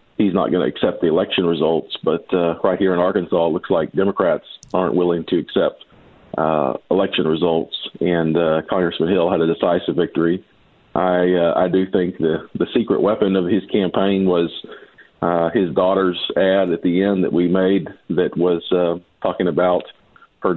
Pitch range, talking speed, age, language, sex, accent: 85-95 Hz, 180 wpm, 40-59, English, male, American